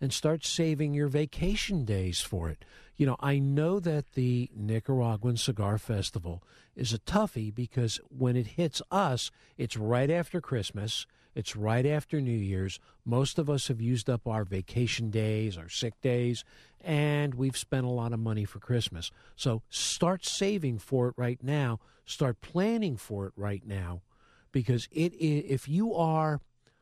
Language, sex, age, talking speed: English, male, 50-69, 160 wpm